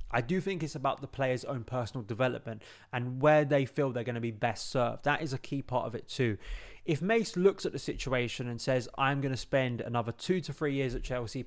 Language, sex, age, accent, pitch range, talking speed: English, male, 20-39, British, 120-140 Hz, 245 wpm